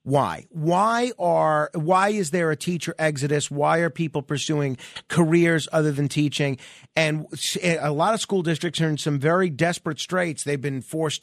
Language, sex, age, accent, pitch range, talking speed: English, male, 40-59, American, 150-185 Hz, 170 wpm